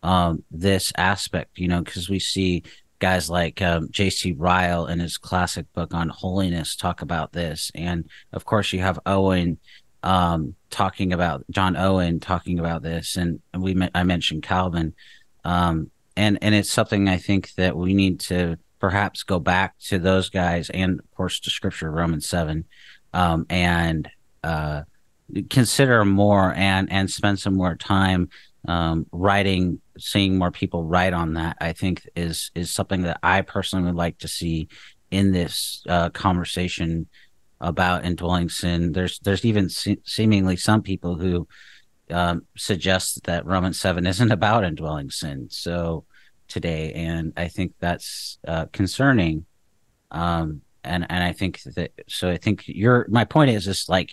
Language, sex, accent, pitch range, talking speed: English, male, American, 85-95 Hz, 160 wpm